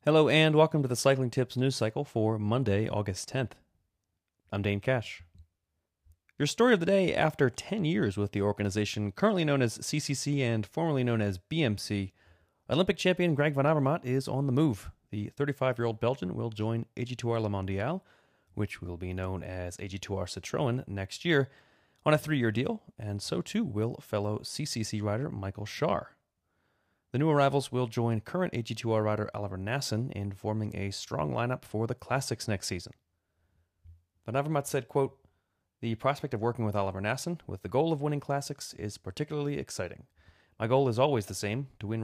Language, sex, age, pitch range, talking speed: English, male, 30-49, 100-140 Hz, 175 wpm